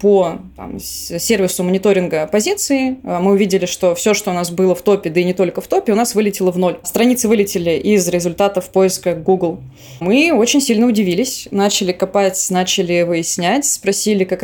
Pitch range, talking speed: 185-220 Hz, 175 wpm